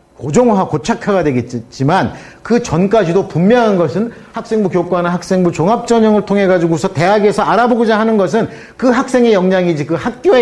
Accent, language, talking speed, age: Korean, English, 125 wpm, 40-59